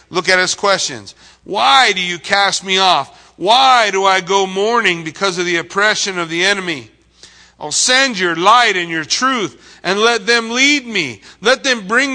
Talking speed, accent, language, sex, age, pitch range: 185 wpm, American, English, male, 40-59, 195-260 Hz